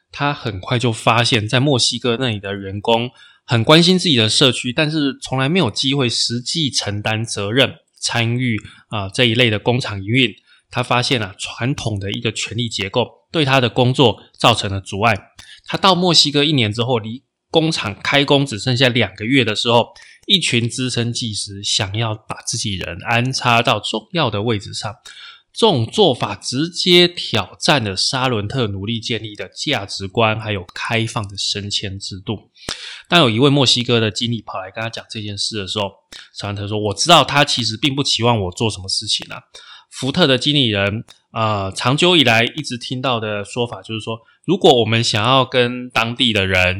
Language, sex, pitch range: Chinese, male, 105-135 Hz